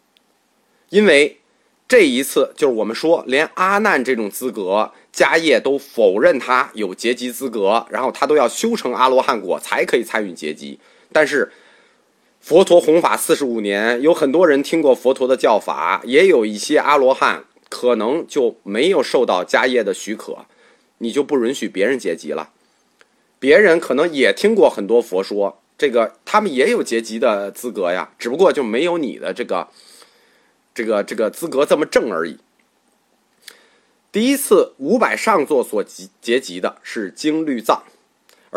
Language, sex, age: Chinese, male, 30-49